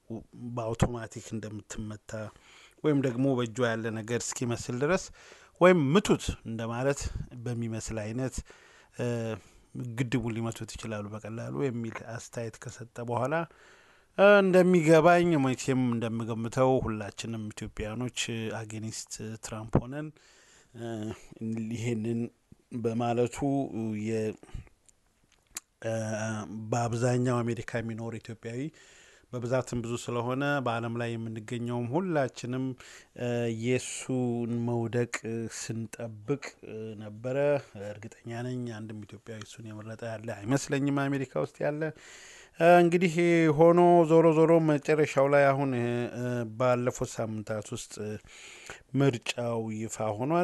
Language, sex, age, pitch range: English, male, 30-49, 110-135 Hz